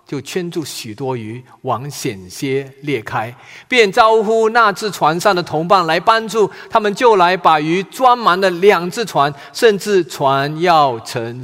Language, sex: Chinese, male